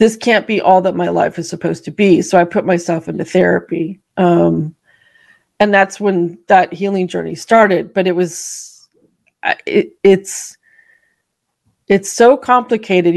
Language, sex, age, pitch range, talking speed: English, female, 30-49, 175-210 Hz, 145 wpm